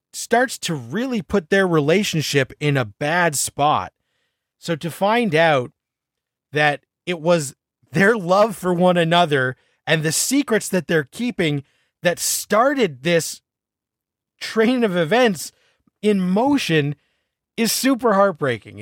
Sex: male